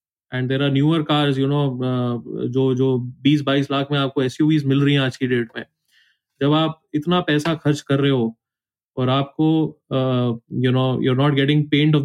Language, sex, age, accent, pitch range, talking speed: Hindi, male, 20-39, native, 125-145 Hz, 200 wpm